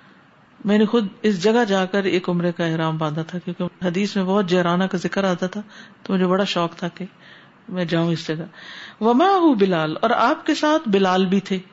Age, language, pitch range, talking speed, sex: 50-69, Urdu, 185-240 Hz, 100 wpm, female